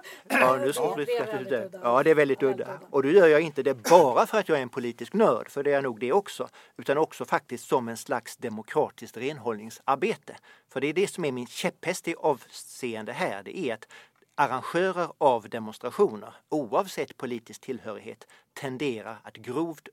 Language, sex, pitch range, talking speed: English, male, 120-150 Hz, 185 wpm